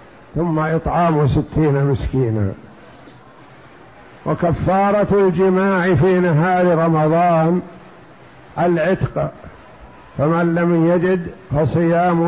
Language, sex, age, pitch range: Arabic, male, 60-79, 155-190 Hz